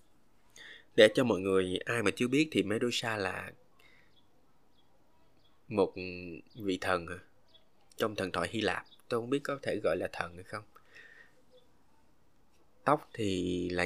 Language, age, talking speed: Vietnamese, 20-39, 140 wpm